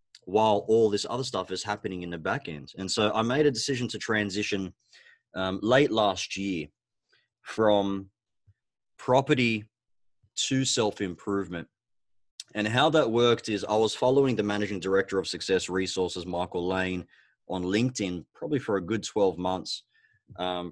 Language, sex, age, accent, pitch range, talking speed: English, male, 30-49, Australian, 95-115 Hz, 150 wpm